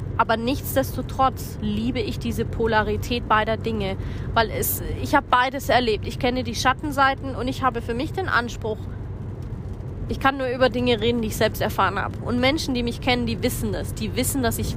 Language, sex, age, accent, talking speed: German, female, 20-39, German, 190 wpm